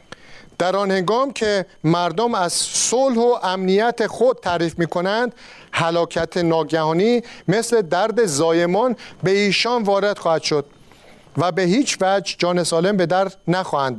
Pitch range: 165-210 Hz